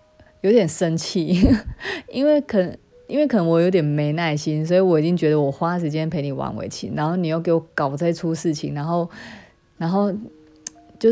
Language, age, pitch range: Chinese, 20-39, 155-195 Hz